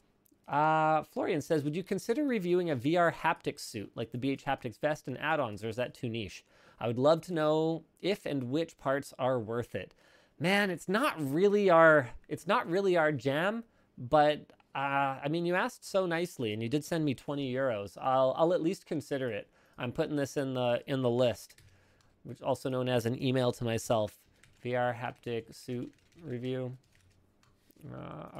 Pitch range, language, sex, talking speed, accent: 120-160 Hz, English, male, 185 wpm, American